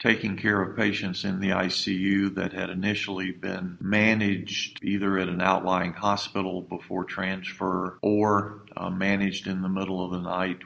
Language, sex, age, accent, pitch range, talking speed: English, male, 50-69, American, 90-100 Hz, 160 wpm